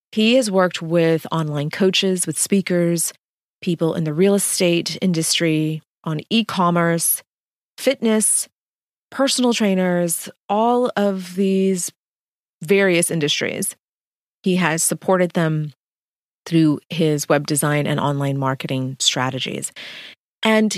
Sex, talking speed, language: female, 105 wpm, English